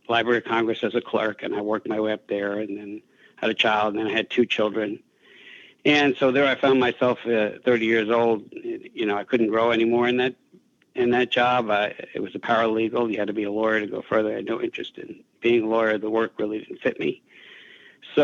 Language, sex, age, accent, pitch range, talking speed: English, male, 60-79, American, 110-140 Hz, 245 wpm